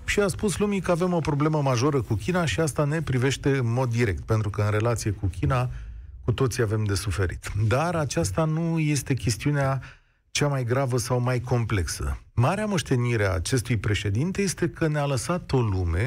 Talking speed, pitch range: 190 wpm, 110-155 Hz